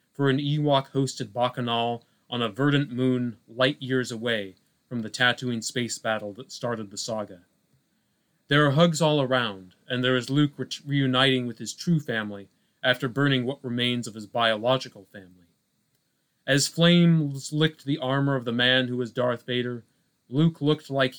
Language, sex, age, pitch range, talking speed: English, male, 30-49, 120-140 Hz, 160 wpm